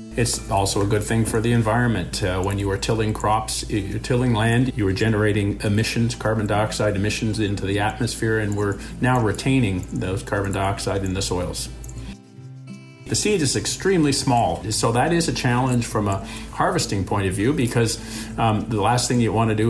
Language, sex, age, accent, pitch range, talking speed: English, male, 50-69, American, 100-125 Hz, 190 wpm